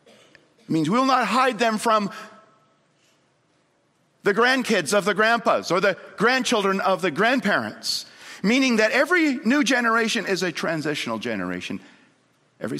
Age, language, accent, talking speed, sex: 50-69, English, American, 135 wpm, male